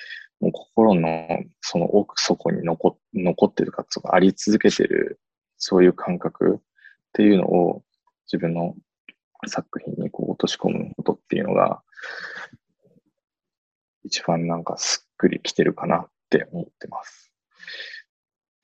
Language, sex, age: Japanese, male, 20-39